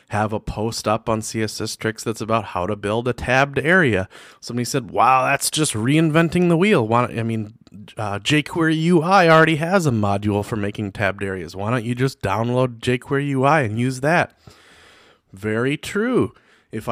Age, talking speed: 30-49, 175 wpm